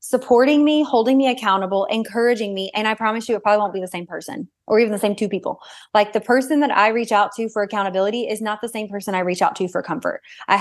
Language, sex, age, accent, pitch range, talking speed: English, female, 20-39, American, 195-245 Hz, 260 wpm